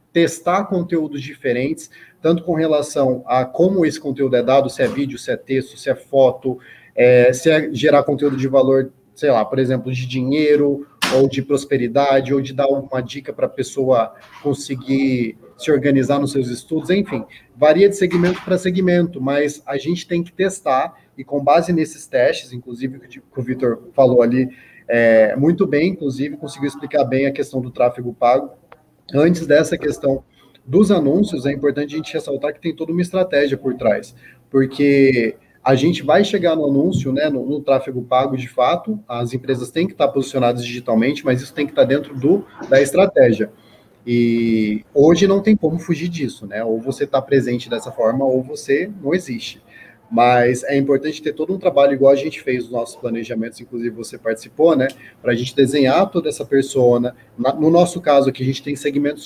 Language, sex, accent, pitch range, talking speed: Portuguese, male, Brazilian, 130-155 Hz, 185 wpm